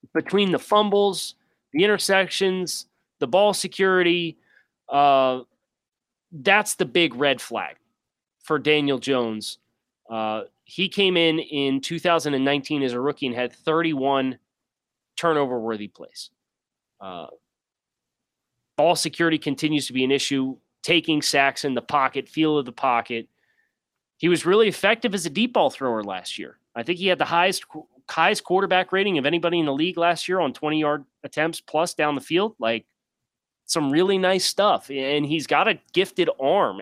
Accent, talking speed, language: American, 155 wpm, English